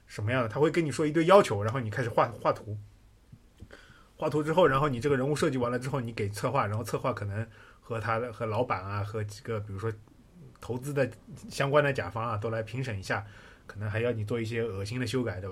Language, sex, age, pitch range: Chinese, male, 20-39, 105-145 Hz